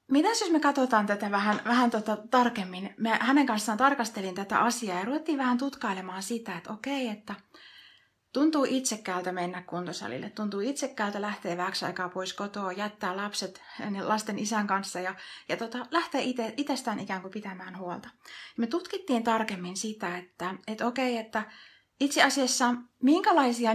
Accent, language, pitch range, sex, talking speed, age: native, Finnish, 205-250 Hz, female, 150 wpm, 30-49